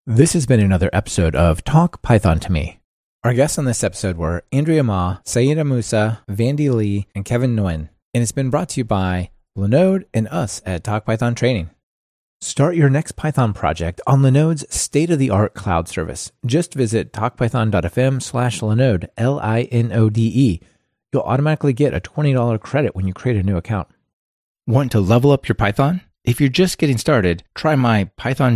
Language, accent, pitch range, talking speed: English, American, 95-130 Hz, 170 wpm